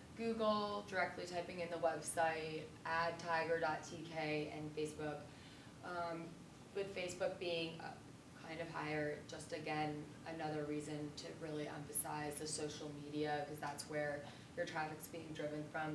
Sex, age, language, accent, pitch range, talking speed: female, 20-39, English, American, 150-170 Hz, 130 wpm